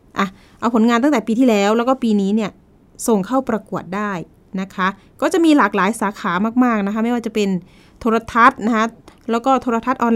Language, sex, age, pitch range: Thai, female, 20-39, 195-245 Hz